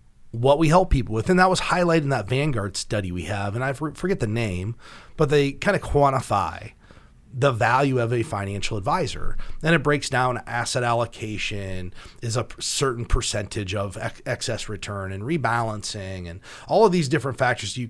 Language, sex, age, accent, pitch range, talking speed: English, male, 30-49, American, 105-140 Hz, 180 wpm